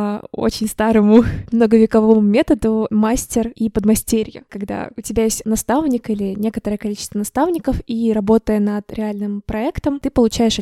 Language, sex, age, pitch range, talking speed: Russian, female, 20-39, 215-235 Hz, 130 wpm